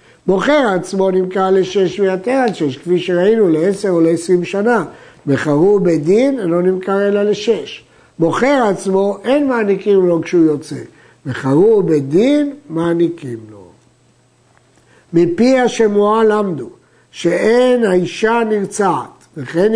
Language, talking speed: Hebrew, 110 wpm